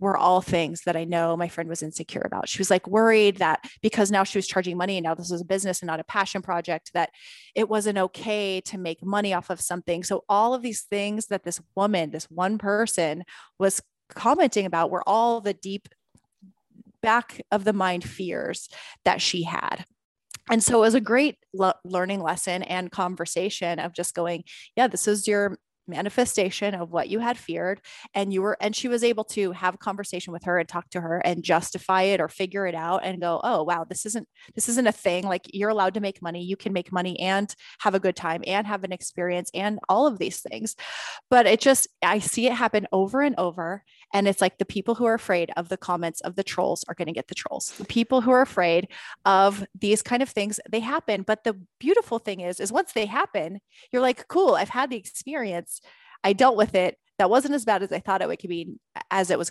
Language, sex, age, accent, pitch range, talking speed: English, female, 30-49, American, 180-215 Hz, 225 wpm